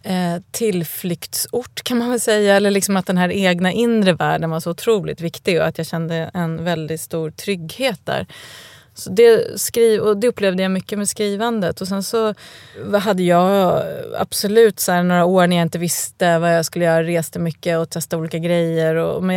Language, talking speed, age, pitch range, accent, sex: English, 190 wpm, 30-49, 165-195 Hz, Swedish, female